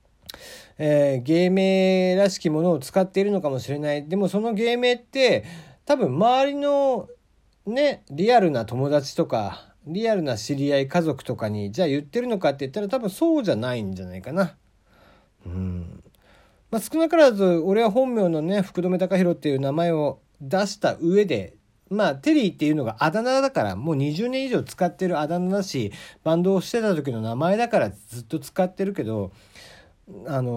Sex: male